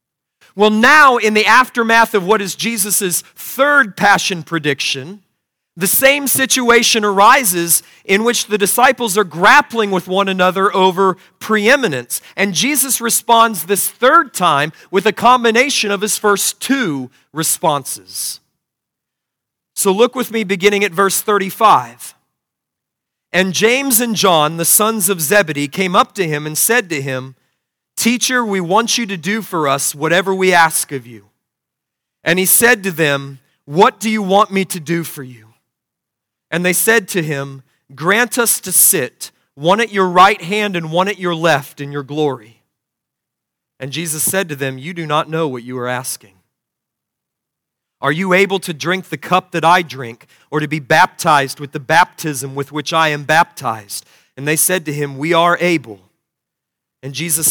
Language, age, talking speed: English, 40-59, 165 wpm